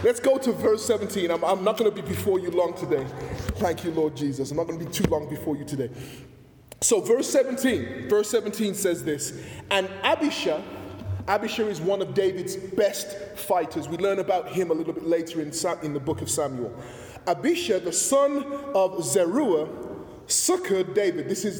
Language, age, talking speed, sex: English, 20-39, 190 wpm, male